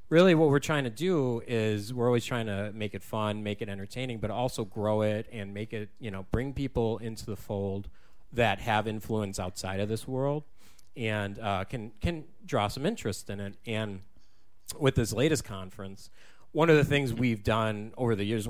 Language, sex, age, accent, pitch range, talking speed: English, male, 40-59, American, 100-125 Hz, 200 wpm